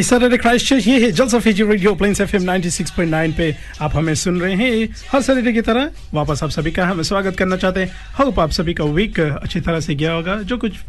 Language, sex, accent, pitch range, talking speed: Hindi, male, native, 155-195 Hz, 200 wpm